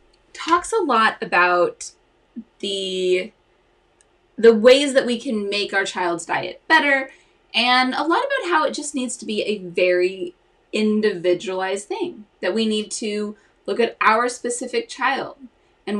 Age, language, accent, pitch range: 20-39, English, American, 200-290 Hz